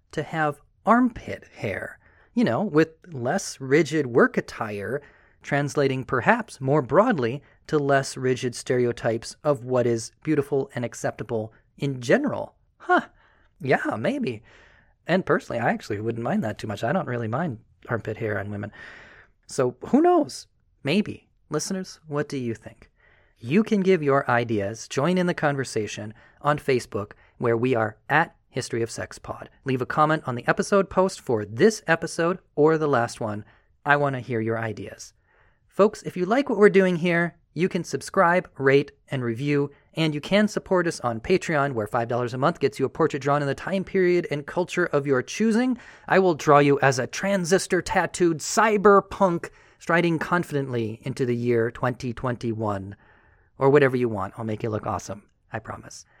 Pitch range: 120-170 Hz